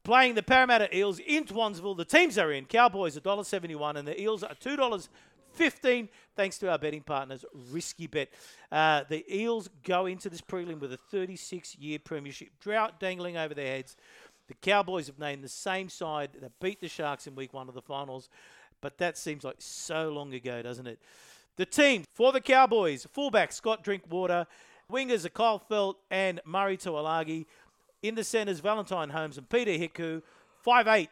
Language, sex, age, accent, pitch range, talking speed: English, male, 50-69, Australian, 150-215 Hz, 175 wpm